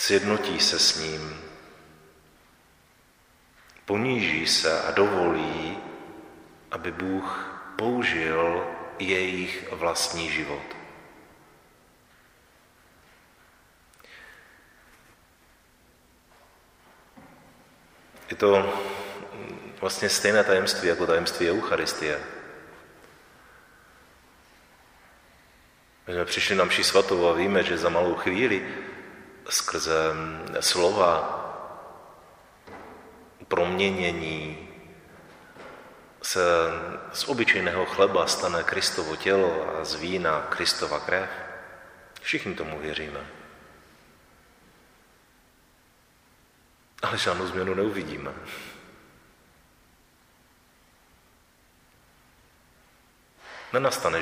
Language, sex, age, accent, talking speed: Czech, male, 40-59, native, 60 wpm